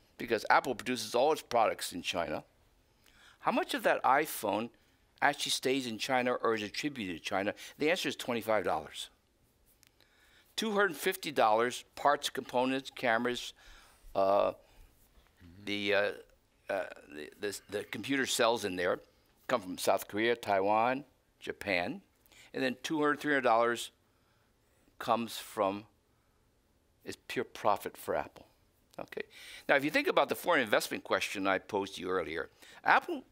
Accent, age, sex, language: American, 60-79, male, Chinese